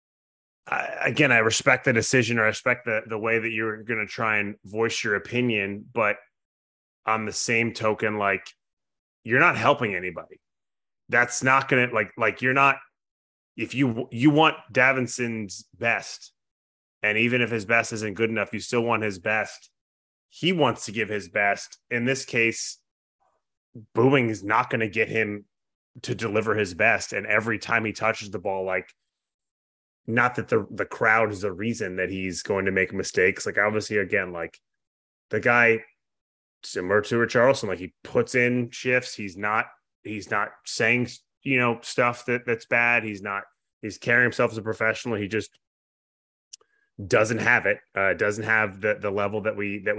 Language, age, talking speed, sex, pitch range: English, 20-39, 175 wpm, male, 105-120 Hz